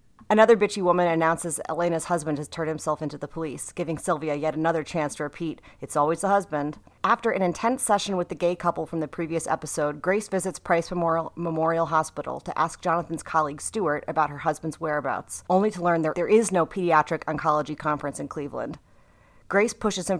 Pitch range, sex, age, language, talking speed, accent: 150-180 Hz, female, 30-49, English, 190 wpm, American